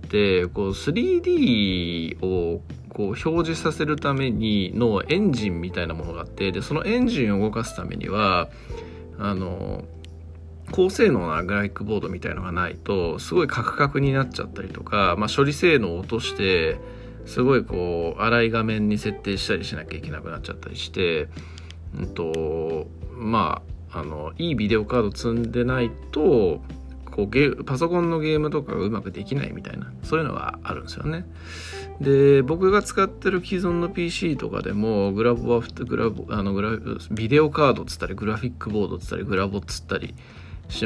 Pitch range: 85-125 Hz